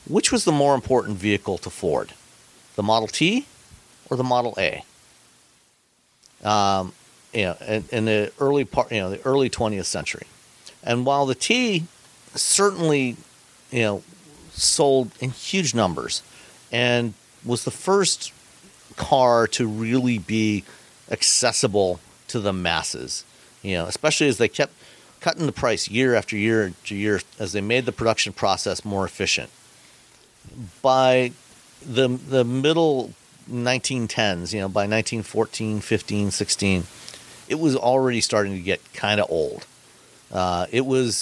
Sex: male